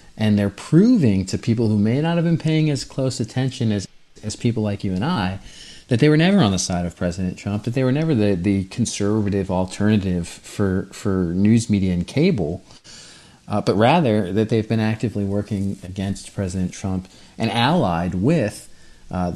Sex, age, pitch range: male, 30-49, 90-110 Hz